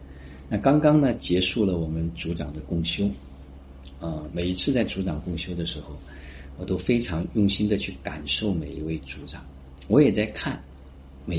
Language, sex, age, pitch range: Chinese, male, 50-69, 70-100 Hz